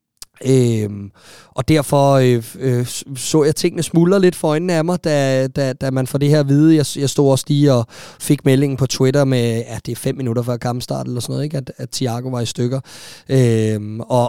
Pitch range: 120-145 Hz